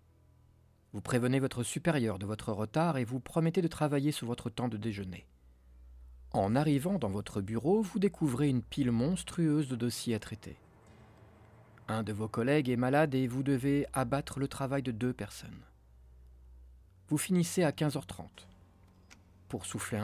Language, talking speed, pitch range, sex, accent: French, 155 wpm, 95-145 Hz, male, French